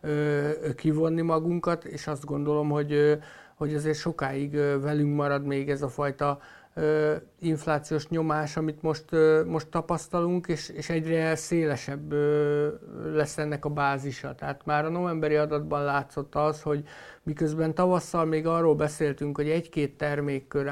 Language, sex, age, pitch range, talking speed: Hungarian, male, 60-79, 135-155 Hz, 130 wpm